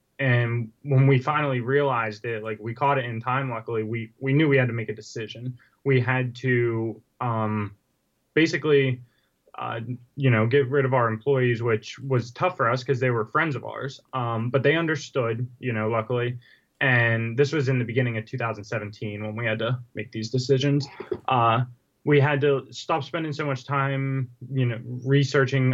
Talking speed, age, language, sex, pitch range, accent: 185 wpm, 20-39, English, male, 115-135 Hz, American